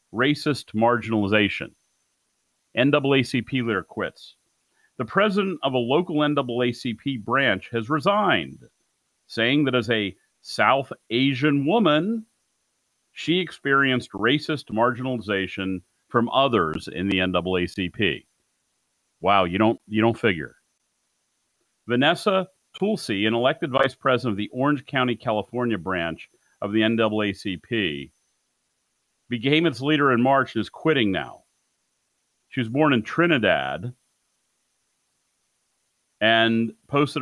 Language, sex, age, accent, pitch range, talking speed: English, male, 40-59, American, 110-140 Hz, 110 wpm